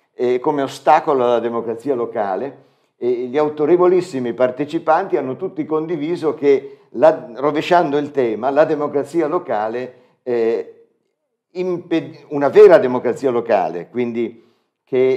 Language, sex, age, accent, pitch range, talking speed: Italian, male, 50-69, native, 120-155 Hz, 120 wpm